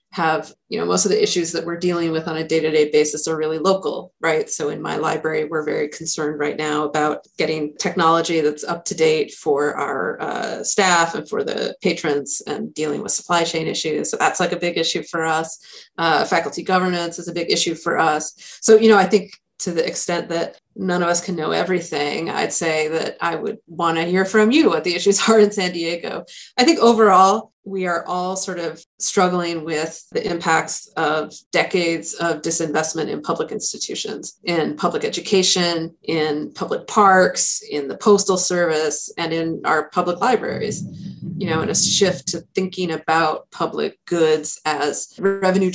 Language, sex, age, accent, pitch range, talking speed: English, female, 30-49, American, 160-190 Hz, 190 wpm